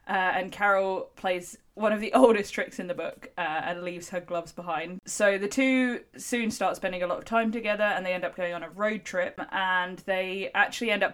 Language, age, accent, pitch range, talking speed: English, 20-39, British, 175-215 Hz, 230 wpm